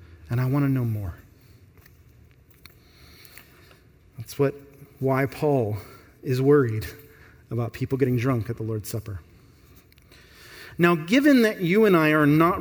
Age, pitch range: 30-49, 115-150 Hz